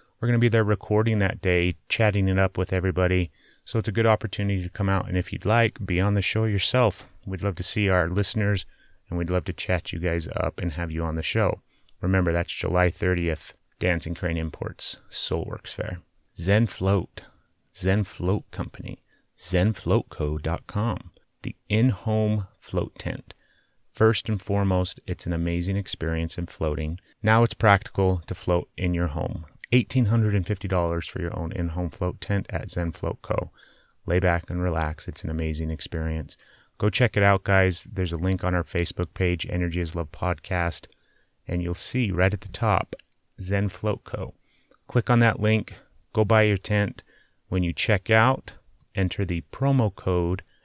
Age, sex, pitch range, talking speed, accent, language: 30-49, male, 85-105 Hz, 175 wpm, American, English